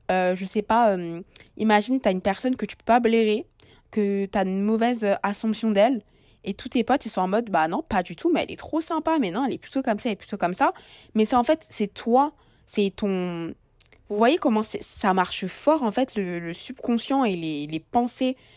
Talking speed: 240 wpm